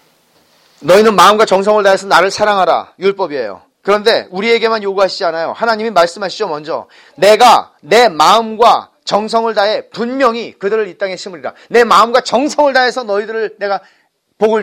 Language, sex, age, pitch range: Korean, male, 40-59, 190-255 Hz